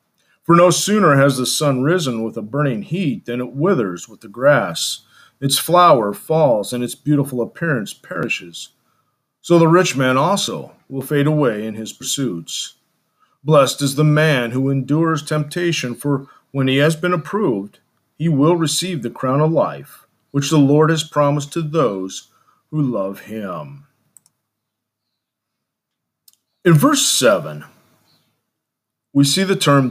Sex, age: male, 40-59